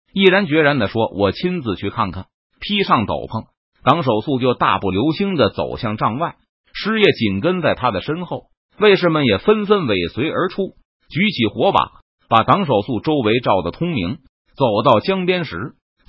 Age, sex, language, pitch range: 30-49, male, Chinese, 120-185 Hz